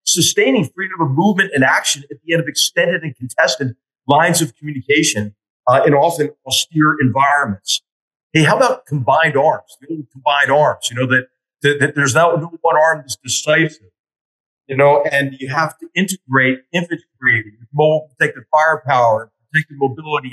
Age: 50-69